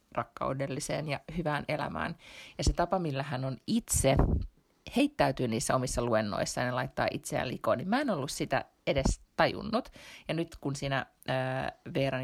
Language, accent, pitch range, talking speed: Finnish, native, 125-145 Hz, 155 wpm